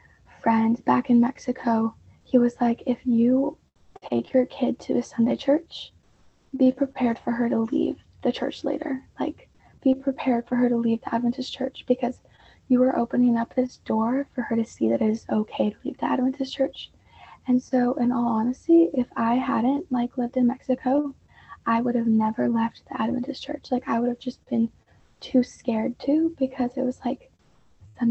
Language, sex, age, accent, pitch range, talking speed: English, female, 20-39, American, 235-265 Hz, 190 wpm